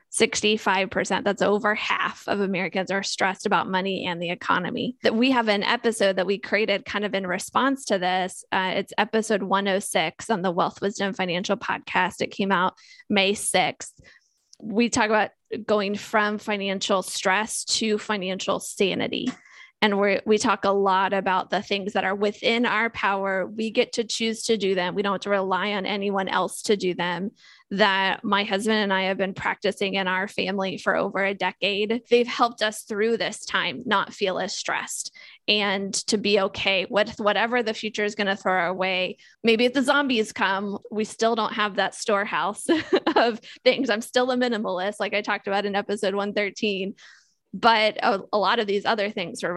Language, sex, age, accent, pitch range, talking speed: English, female, 20-39, American, 195-225 Hz, 190 wpm